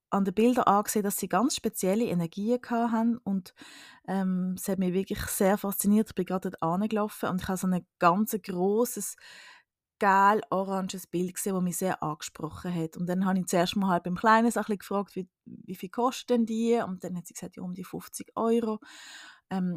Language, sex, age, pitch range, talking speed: German, female, 20-39, 180-210 Hz, 200 wpm